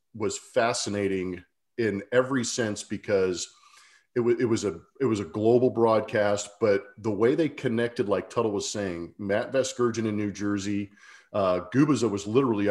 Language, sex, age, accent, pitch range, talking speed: English, male, 40-59, American, 100-125 Hz, 160 wpm